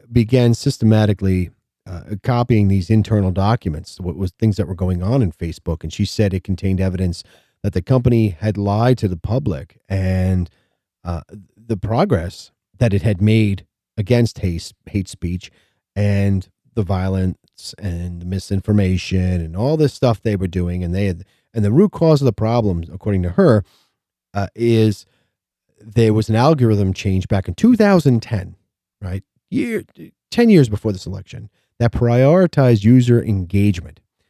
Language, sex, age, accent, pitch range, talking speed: English, male, 30-49, American, 95-120 Hz, 155 wpm